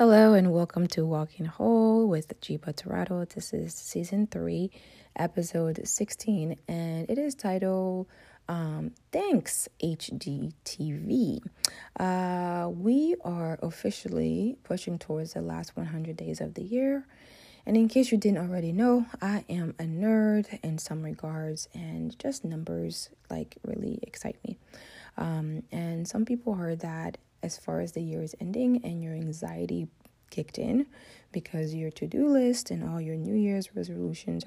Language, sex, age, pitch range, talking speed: English, female, 20-39, 160-215 Hz, 150 wpm